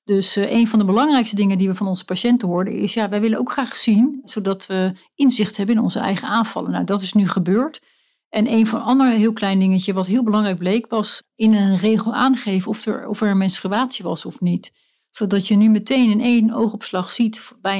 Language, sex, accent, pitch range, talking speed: Dutch, female, Dutch, 190-225 Hz, 225 wpm